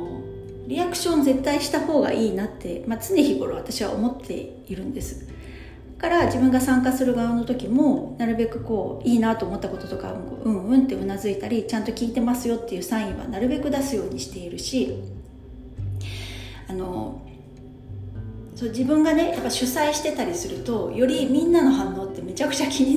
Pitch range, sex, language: 185-285 Hz, female, Japanese